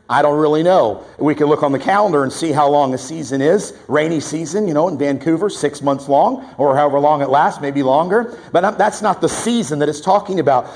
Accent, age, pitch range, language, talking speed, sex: American, 50-69, 145-195 Hz, English, 235 wpm, male